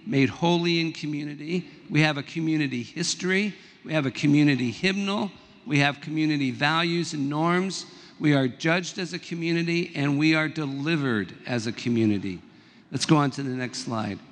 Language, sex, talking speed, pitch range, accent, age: English, male, 170 wpm, 140-170 Hz, American, 50-69